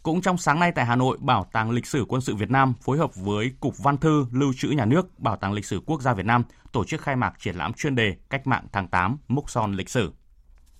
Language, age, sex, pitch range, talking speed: Vietnamese, 20-39, male, 115-150 Hz, 270 wpm